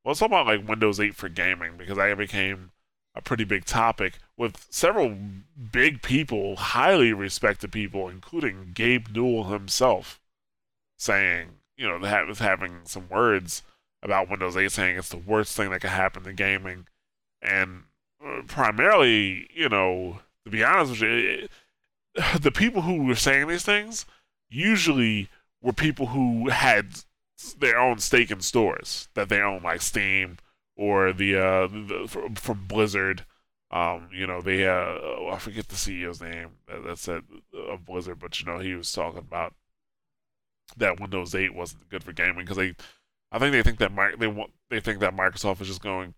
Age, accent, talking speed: 20-39, American, 170 wpm